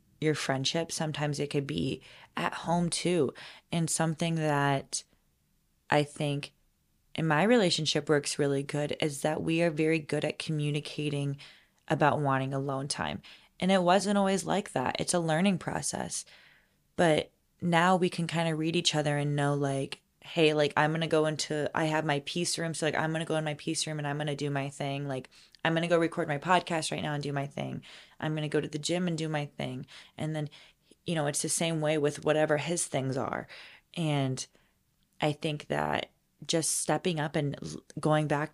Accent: American